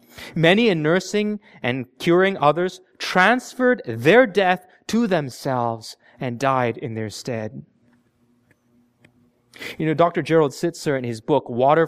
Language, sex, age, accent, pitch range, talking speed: English, male, 30-49, American, 130-195 Hz, 125 wpm